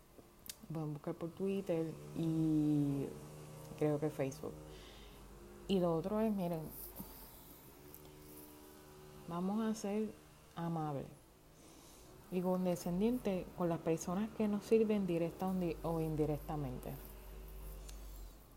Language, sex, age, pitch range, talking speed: Spanish, female, 20-39, 150-195 Hz, 95 wpm